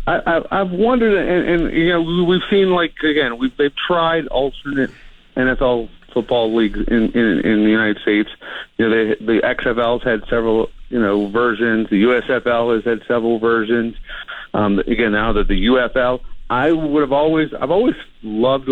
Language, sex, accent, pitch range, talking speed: English, male, American, 115-145 Hz, 175 wpm